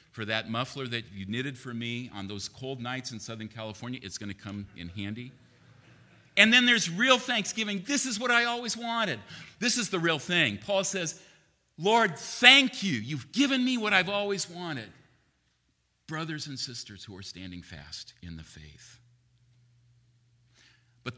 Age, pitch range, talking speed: 50-69, 120-195 Hz, 170 wpm